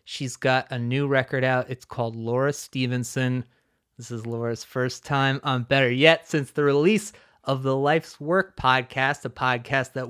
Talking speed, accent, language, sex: 170 wpm, American, English, male